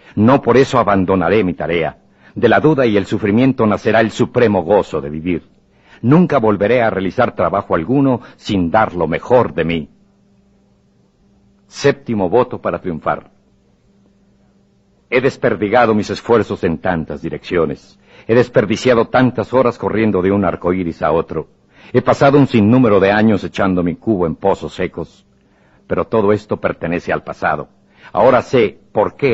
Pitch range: 85-115 Hz